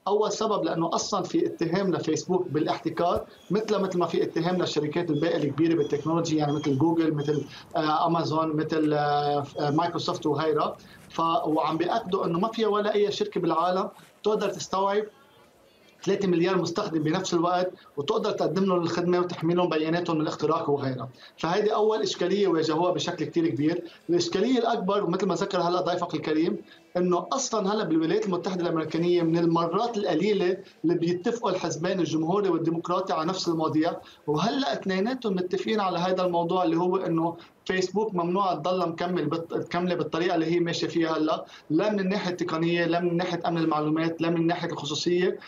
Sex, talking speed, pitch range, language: male, 155 wpm, 160-185 Hz, Arabic